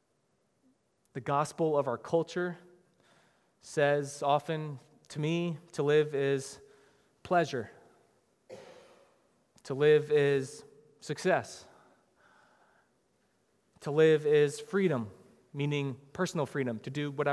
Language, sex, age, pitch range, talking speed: English, male, 20-39, 125-150 Hz, 95 wpm